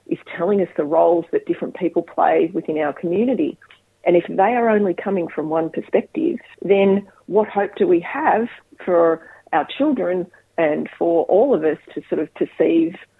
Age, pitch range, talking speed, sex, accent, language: 40-59, 170-230 Hz, 175 wpm, female, Australian, English